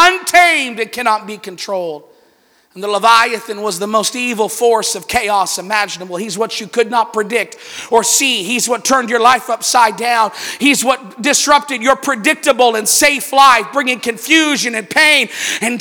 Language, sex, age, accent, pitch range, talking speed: English, male, 40-59, American, 230-300 Hz, 165 wpm